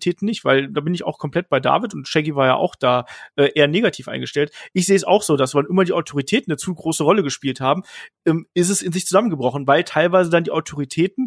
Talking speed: 245 wpm